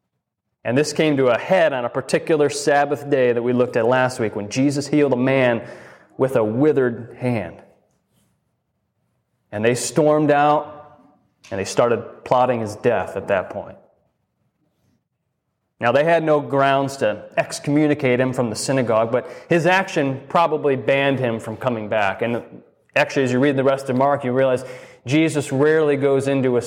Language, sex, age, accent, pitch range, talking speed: English, male, 30-49, American, 120-145 Hz, 170 wpm